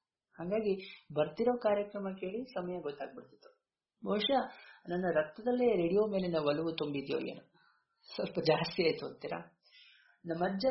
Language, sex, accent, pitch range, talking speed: Kannada, male, native, 160-220 Hz, 100 wpm